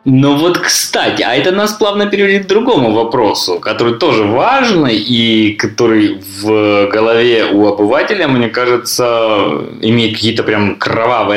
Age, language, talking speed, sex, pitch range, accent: 20-39, Russian, 135 wpm, male, 110-145 Hz, native